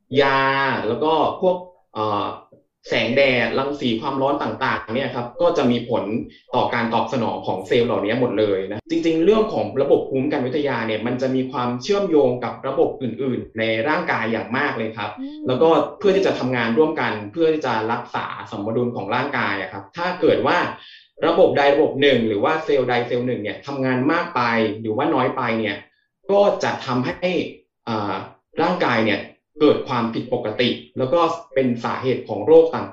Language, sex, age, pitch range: Thai, male, 20-39, 120-155 Hz